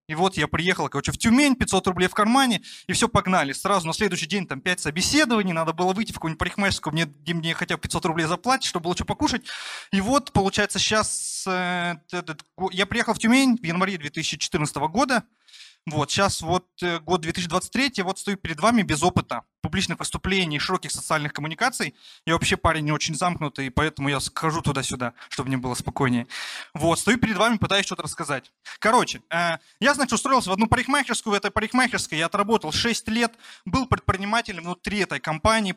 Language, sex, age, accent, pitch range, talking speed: Russian, male, 20-39, native, 165-220 Hz, 180 wpm